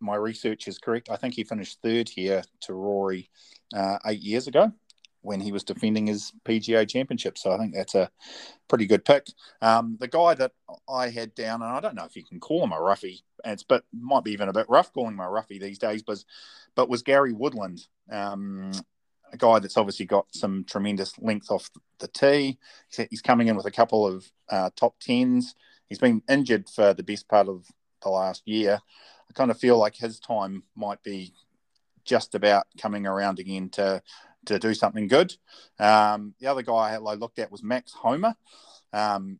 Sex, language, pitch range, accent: male, English, 100-120 Hz, Australian